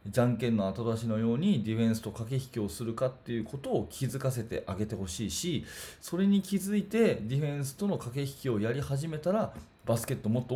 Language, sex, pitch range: Japanese, male, 105-130 Hz